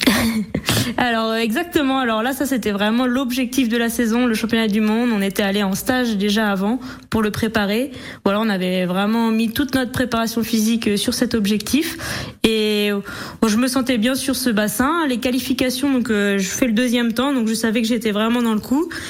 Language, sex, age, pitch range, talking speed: French, female, 20-39, 205-250 Hz, 200 wpm